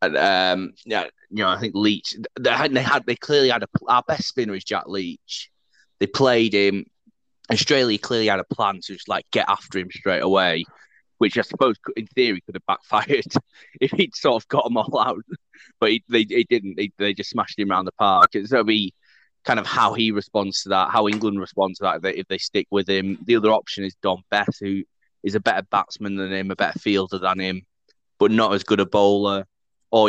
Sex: male